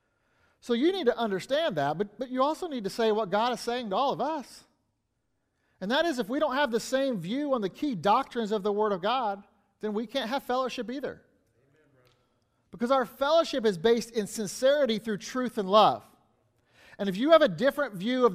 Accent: American